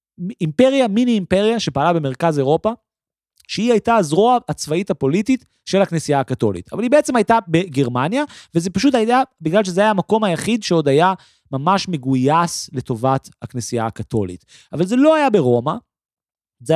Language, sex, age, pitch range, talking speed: Hebrew, male, 30-49, 135-215 Hz, 145 wpm